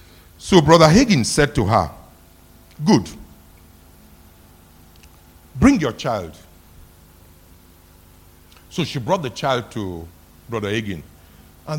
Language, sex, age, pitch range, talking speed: English, male, 60-79, 85-125 Hz, 95 wpm